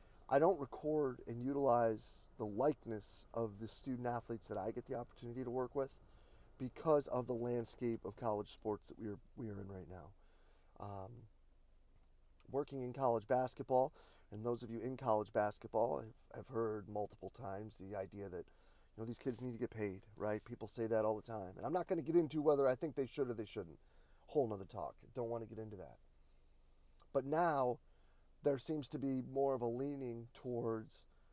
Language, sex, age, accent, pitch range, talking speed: English, male, 30-49, American, 105-130 Hz, 200 wpm